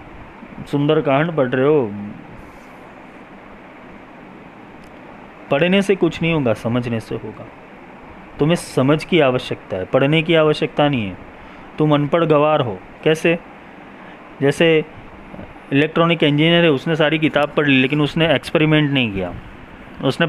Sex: male